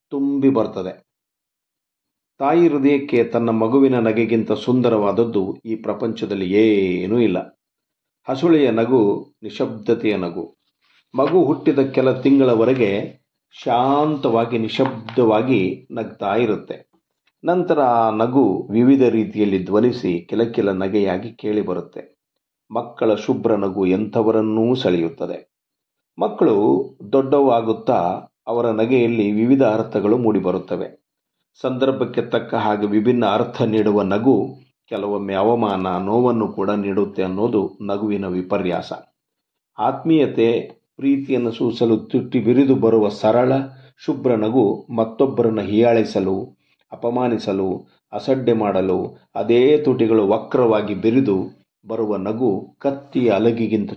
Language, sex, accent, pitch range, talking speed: Kannada, male, native, 105-125 Hz, 90 wpm